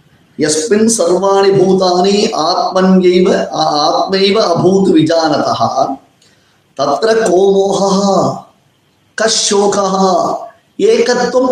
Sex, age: male, 30-49